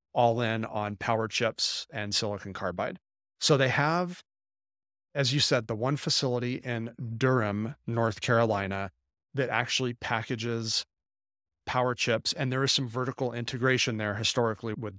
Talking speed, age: 140 wpm, 30-49